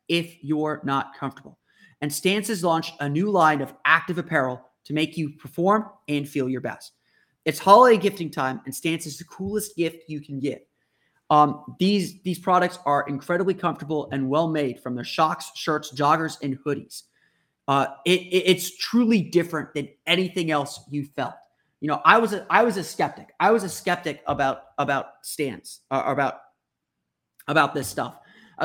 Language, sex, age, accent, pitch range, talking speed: English, male, 30-49, American, 145-180 Hz, 170 wpm